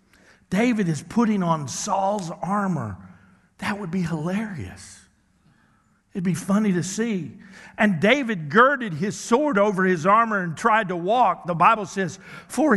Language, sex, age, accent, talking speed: English, male, 60-79, American, 145 wpm